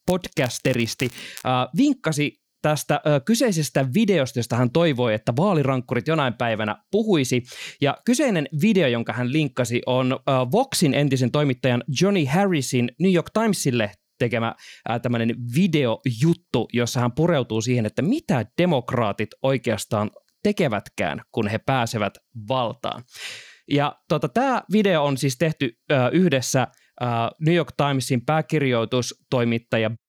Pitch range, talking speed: 120-170 Hz, 120 wpm